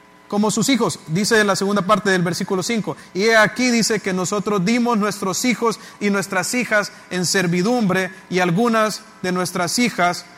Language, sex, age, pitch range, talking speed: English, male, 30-49, 185-225 Hz, 160 wpm